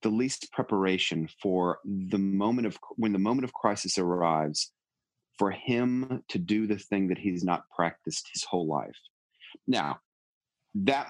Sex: male